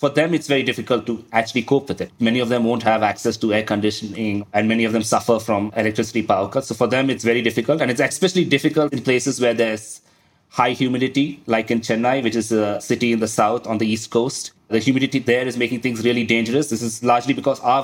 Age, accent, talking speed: 20-39, Indian, 240 wpm